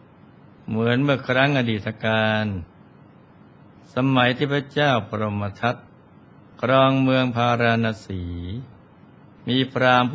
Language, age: Thai, 60-79